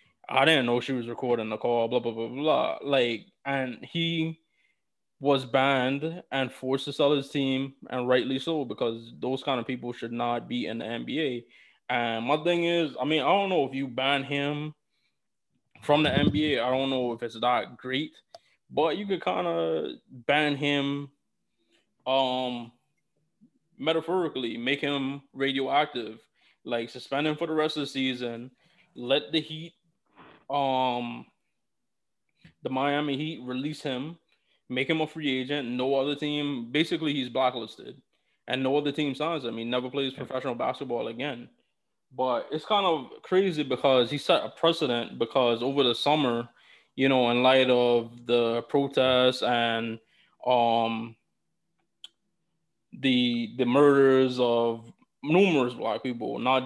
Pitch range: 120-145 Hz